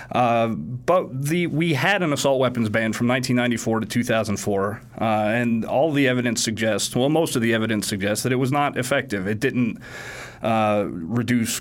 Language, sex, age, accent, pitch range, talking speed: English, male, 30-49, American, 115-135 Hz, 160 wpm